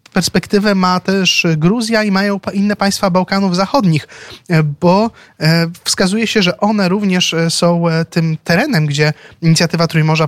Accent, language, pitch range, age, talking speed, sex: native, Polish, 145-180 Hz, 20-39, 130 wpm, male